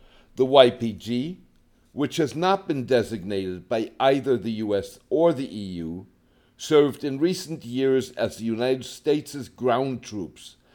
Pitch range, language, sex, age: 110-145 Hz, English, male, 60-79